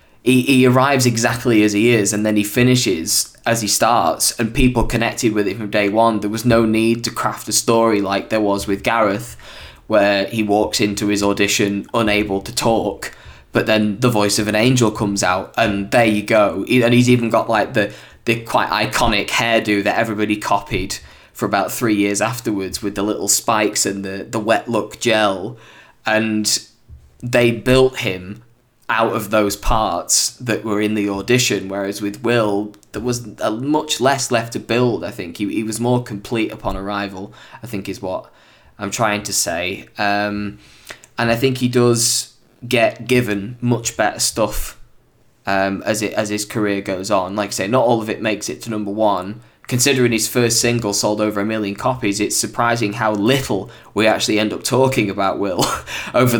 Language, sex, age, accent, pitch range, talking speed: English, male, 10-29, British, 105-120 Hz, 185 wpm